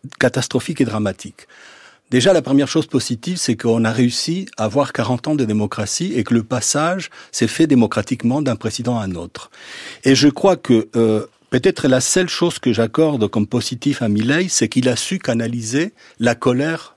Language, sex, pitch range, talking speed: French, male, 115-150 Hz, 185 wpm